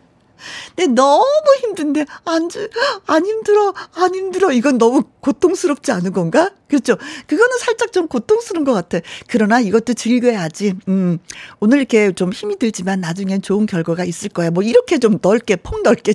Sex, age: female, 40-59